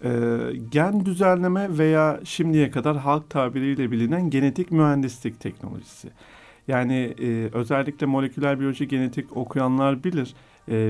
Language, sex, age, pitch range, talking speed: Turkish, male, 50-69, 120-150 Hz, 110 wpm